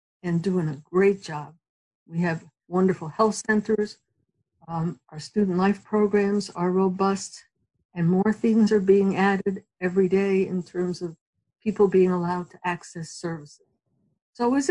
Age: 60-79